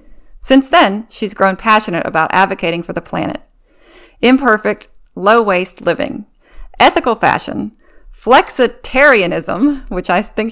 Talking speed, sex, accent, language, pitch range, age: 110 wpm, female, American, English, 175-230 Hz, 40-59